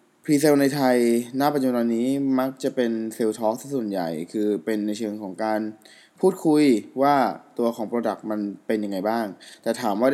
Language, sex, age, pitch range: Thai, male, 20-39, 110-140 Hz